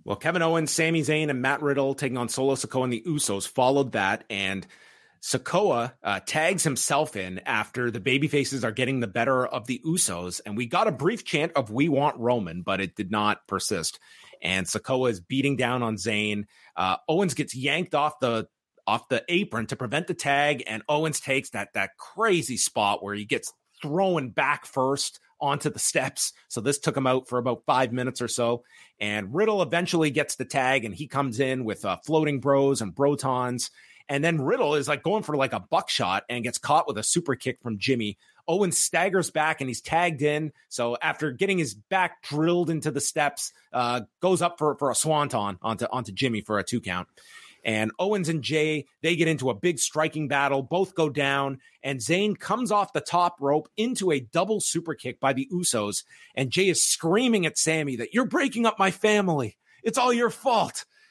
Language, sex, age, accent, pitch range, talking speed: English, male, 30-49, American, 125-165 Hz, 200 wpm